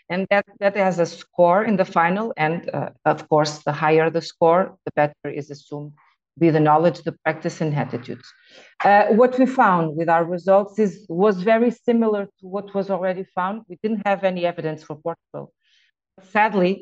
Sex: female